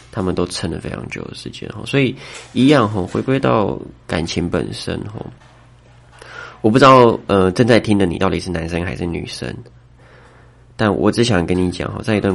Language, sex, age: Chinese, male, 20-39